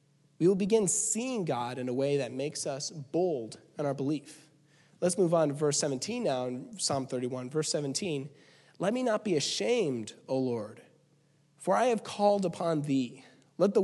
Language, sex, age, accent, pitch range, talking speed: English, male, 30-49, American, 145-185 Hz, 180 wpm